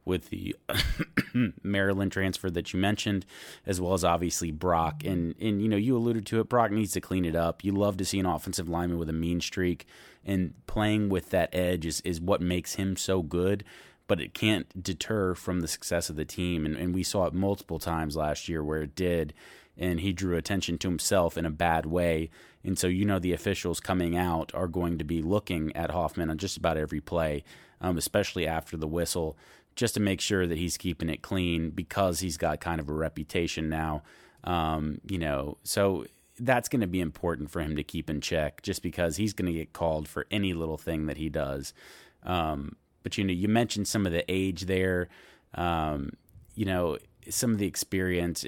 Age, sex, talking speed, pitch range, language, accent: 30-49, male, 210 wpm, 80-95 Hz, English, American